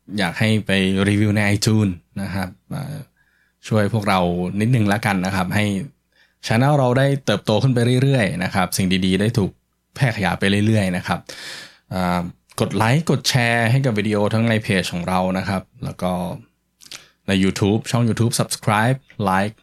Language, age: Thai, 10-29